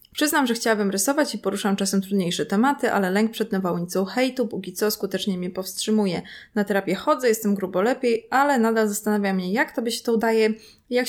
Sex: female